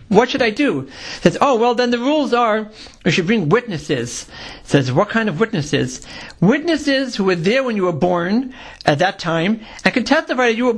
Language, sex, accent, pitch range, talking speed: English, male, American, 170-230 Hz, 215 wpm